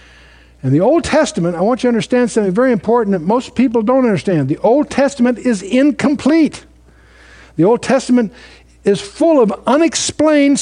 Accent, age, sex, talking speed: American, 60-79, male, 165 wpm